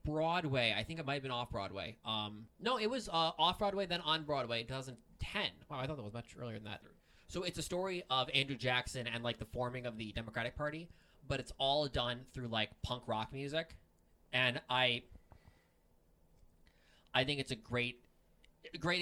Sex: male